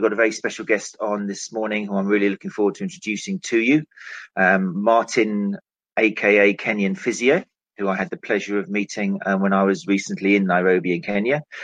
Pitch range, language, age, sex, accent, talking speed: 95-105 Hz, English, 40-59, male, British, 195 wpm